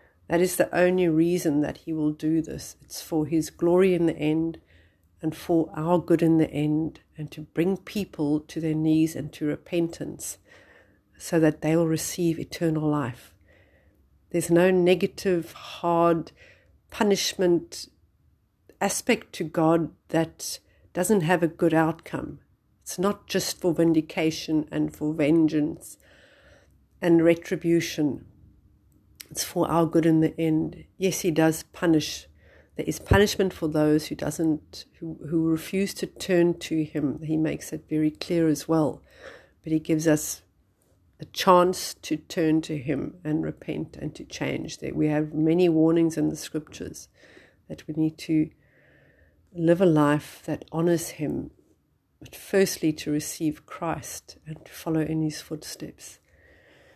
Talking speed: 150 wpm